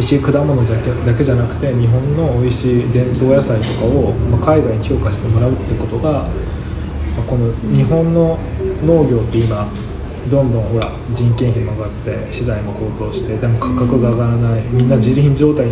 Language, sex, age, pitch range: Japanese, male, 20-39, 110-130 Hz